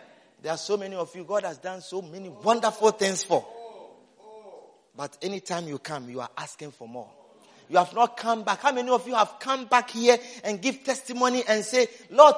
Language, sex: English, male